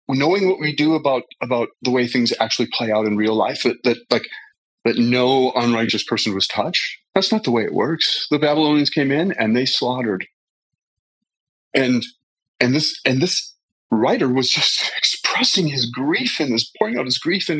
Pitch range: 115-150 Hz